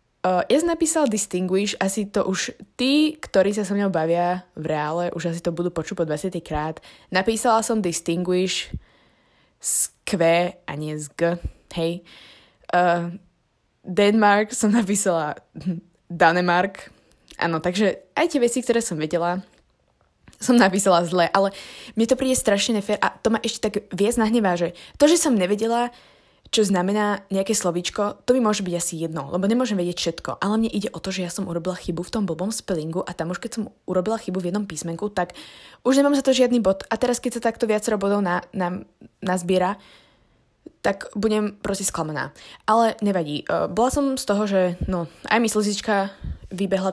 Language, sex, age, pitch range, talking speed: Slovak, female, 20-39, 175-220 Hz, 180 wpm